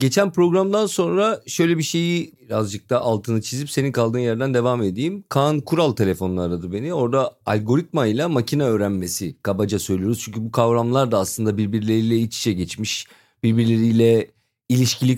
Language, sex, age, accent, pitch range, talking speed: Turkish, male, 40-59, native, 105-135 Hz, 150 wpm